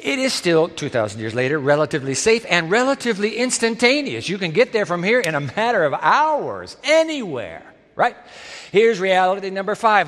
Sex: male